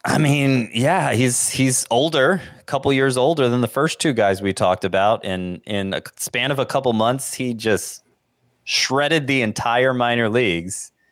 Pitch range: 100-130 Hz